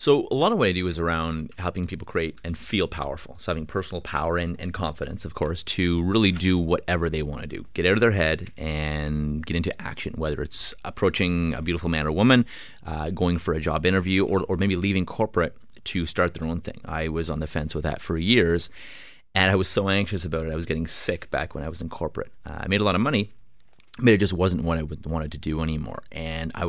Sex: male